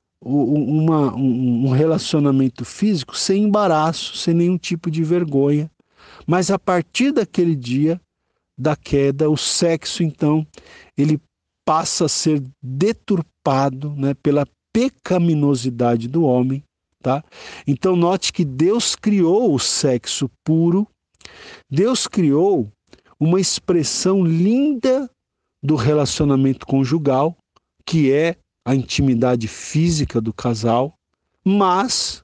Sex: male